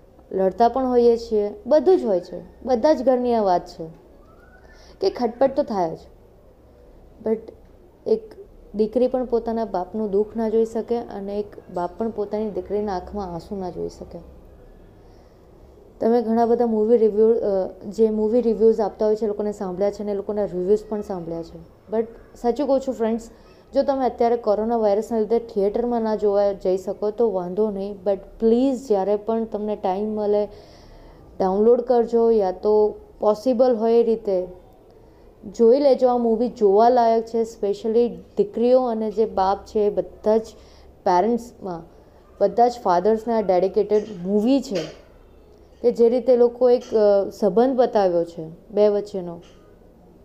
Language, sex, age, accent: Gujarati, female, 20-39, native